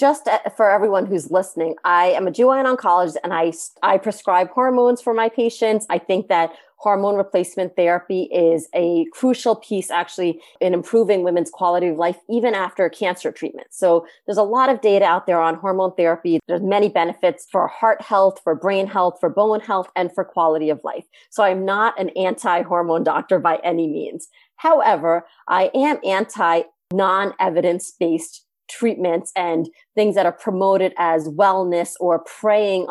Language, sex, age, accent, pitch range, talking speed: English, female, 30-49, American, 175-215 Hz, 165 wpm